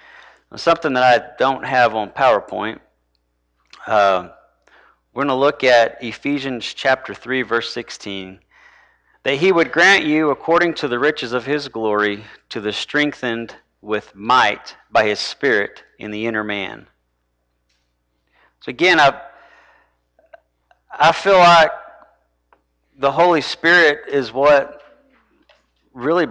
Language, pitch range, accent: English, 100-145 Hz, American